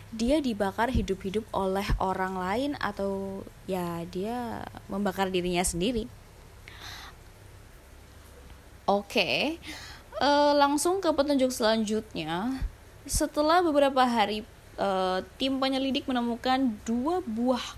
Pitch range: 185-245 Hz